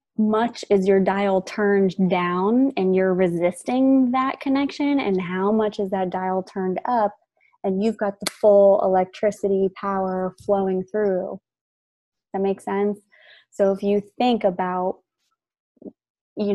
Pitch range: 185-210 Hz